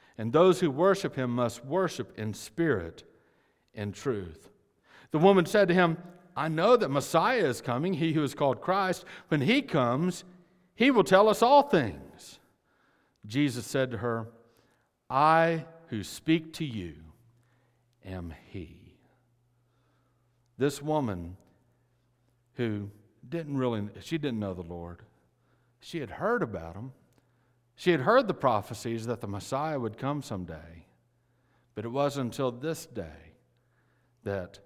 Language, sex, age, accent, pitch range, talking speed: English, male, 60-79, American, 110-145 Hz, 140 wpm